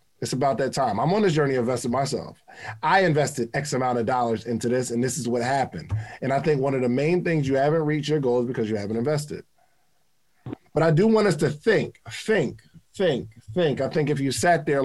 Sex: male